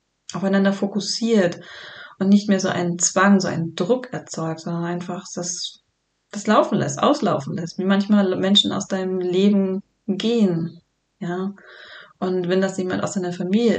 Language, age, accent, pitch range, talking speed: German, 20-39, German, 175-205 Hz, 150 wpm